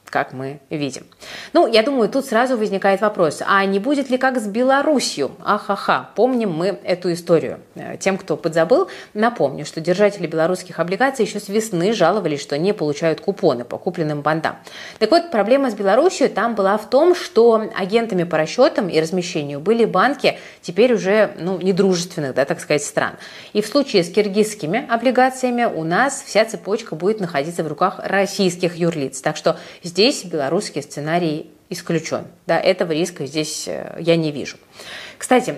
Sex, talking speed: female, 165 wpm